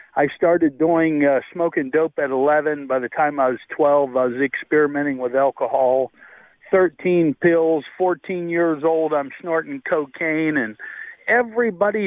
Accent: American